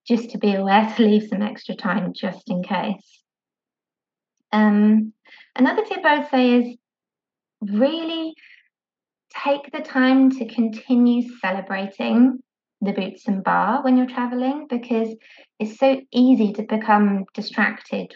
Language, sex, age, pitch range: English, female, 20-39, 200-255 Hz